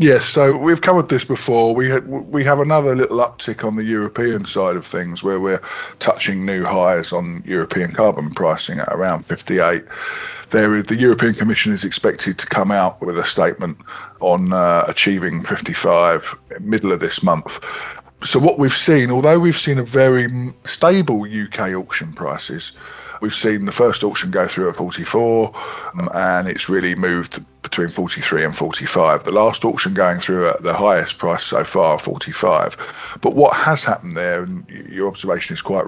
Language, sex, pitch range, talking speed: English, male, 95-130 Hz, 170 wpm